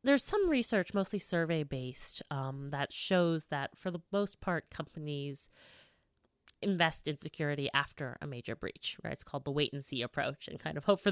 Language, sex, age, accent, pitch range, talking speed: English, female, 30-49, American, 145-195 Hz, 190 wpm